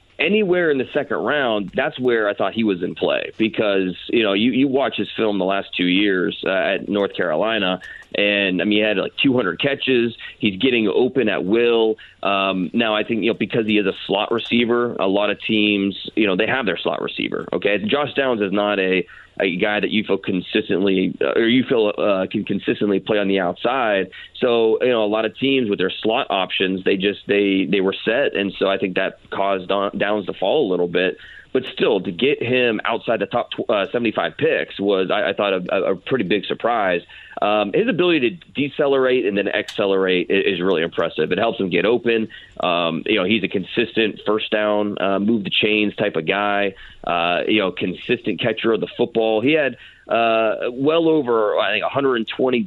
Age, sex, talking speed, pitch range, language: 30-49, male, 210 wpm, 100-115 Hz, English